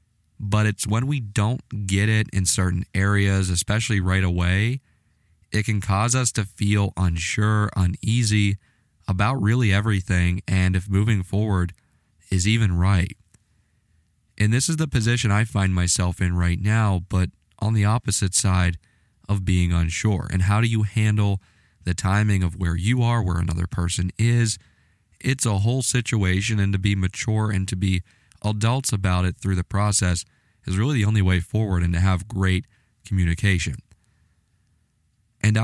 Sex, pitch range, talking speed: male, 90-110 Hz, 160 wpm